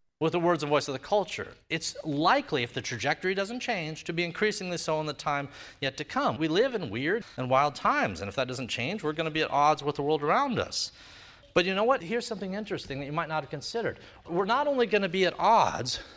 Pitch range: 110-175 Hz